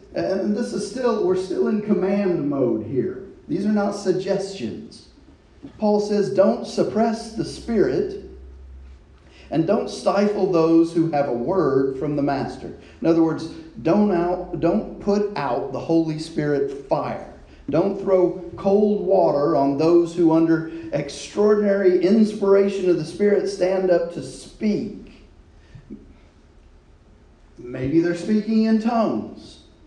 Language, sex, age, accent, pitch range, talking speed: English, male, 40-59, American, 145-205 Hz, 130 wpm